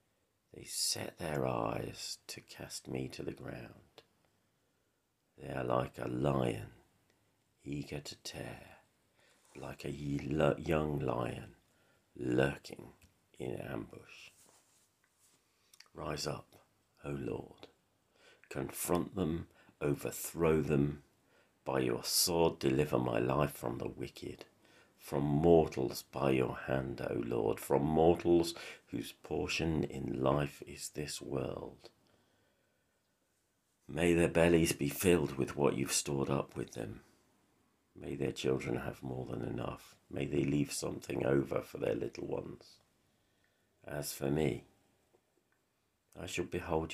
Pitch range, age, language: 70-85 Hz, 50-69, English